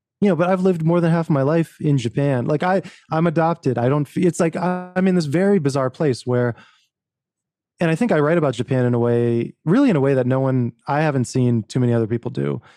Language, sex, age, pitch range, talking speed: English, male, 20-39, 120-150 Hz, 255 wpm